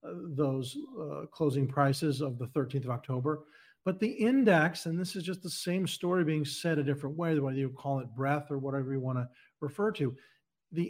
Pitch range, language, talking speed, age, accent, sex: 140-185 Hz, English, 205 wpm, 50-69, American, male